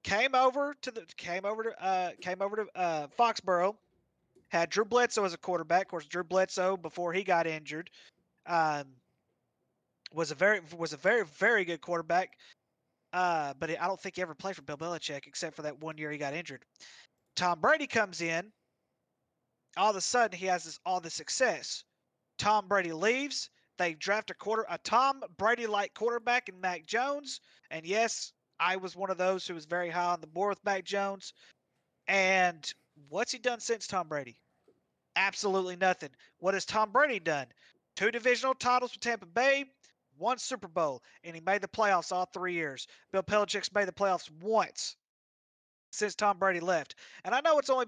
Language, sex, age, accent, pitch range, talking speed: English, male, 30-49, American, 170-215 Hz, 185 wpm